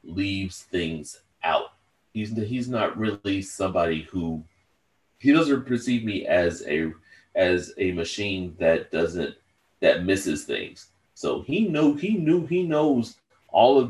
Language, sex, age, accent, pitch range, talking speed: English, male, 30-49, American, 80-110 Hz, 140 wpm